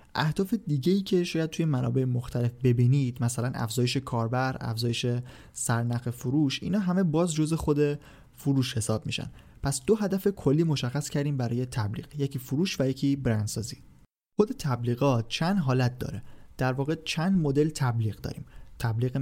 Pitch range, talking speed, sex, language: 120-150 Hz, 155 wpm, male, Persian